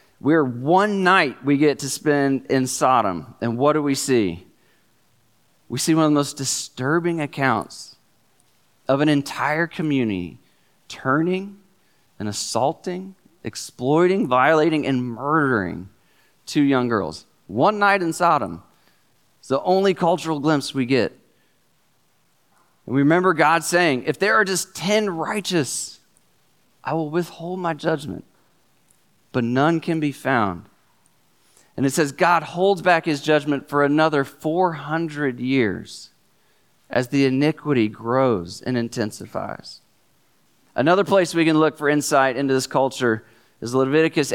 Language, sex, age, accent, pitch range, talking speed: English, male, 40-59, American, 130-170 Hz, 135 wpm